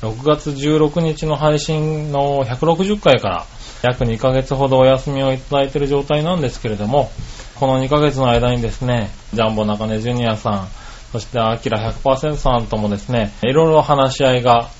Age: 20-39